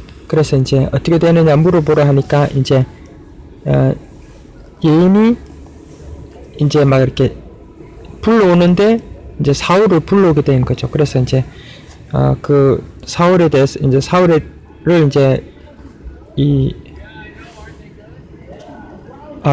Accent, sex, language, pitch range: native, male, Korean, 140-175 Hz